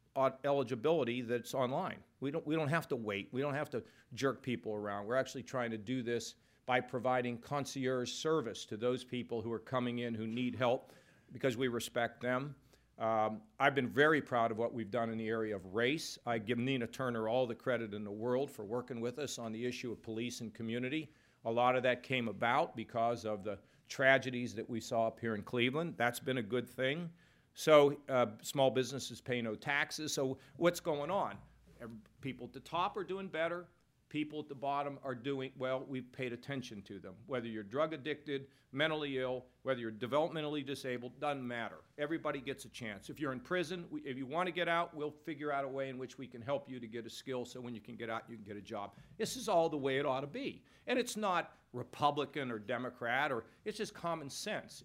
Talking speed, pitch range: 220 wpm, 115-145 Hz